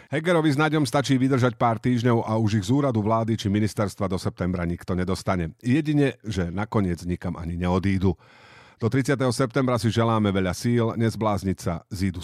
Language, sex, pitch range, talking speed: Slovak, male, 100-130 Hz, 165 wpm